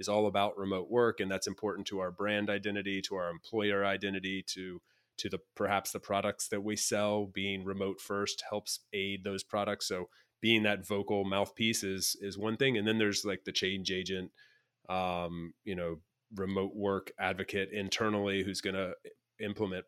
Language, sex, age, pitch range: English, male, 30-49, 95-105 Hz